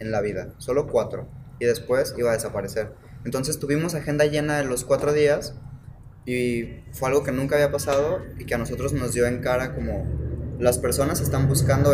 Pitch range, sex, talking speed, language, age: 115-135 Hz, male, 190 wpm, Spanish, 20-39